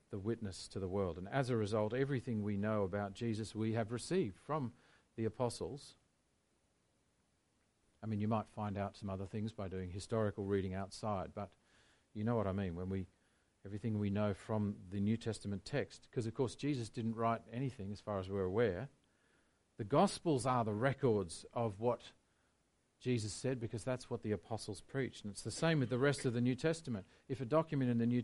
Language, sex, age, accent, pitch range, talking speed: English, male, 40-59, Australian, 100-130 Hz, 200 wpm